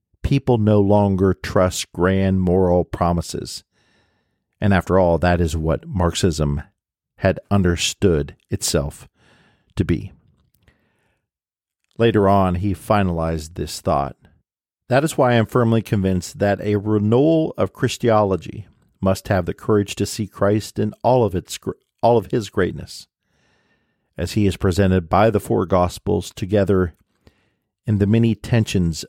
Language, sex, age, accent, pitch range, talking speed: English, male, 50-69, American, 90-105 Hz, 130 wpm